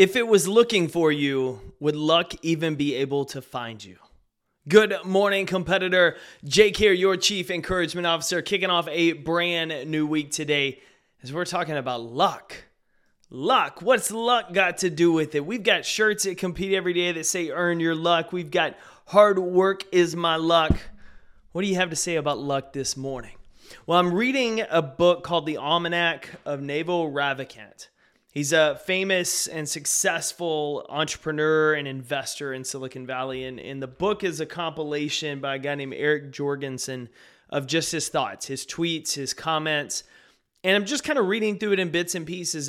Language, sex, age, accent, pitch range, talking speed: English, male, 20-39, American, 145-185 Hz, 180 wpm